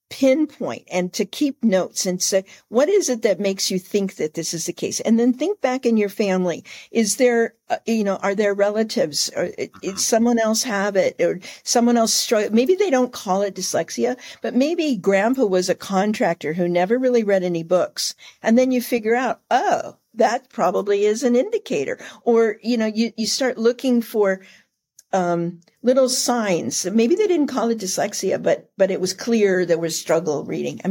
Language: English